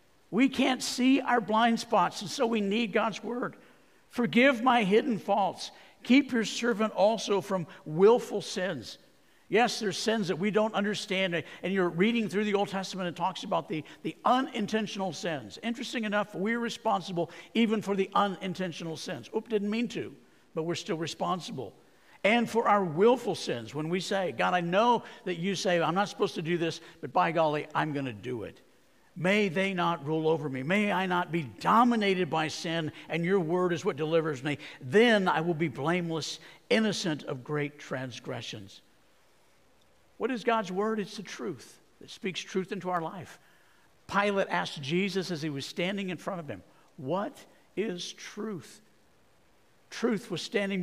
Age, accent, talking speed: 50-69, American, 175 wpm